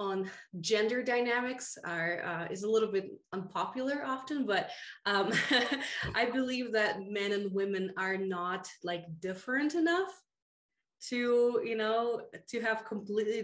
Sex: female